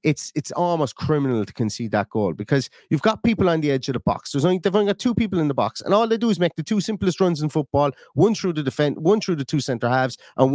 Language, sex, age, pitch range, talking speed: English, male, 30-49, 130-170 Hz, 290 wpm